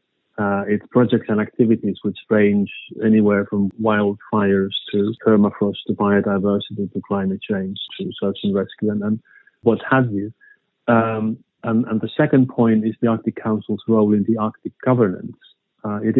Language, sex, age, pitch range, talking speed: English, male, 30-49, 105-120 Hz, 160 wpm